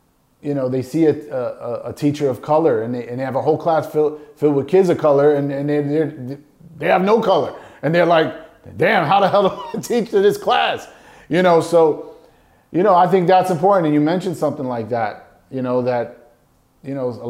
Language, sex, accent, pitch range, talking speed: English, male, American, 130-155 Hz, 230 wpm